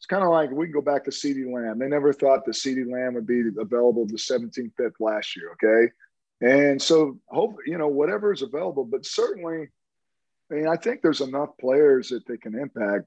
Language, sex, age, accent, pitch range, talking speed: English, male, 40-59, American, 125-160 Hz, 215 wpm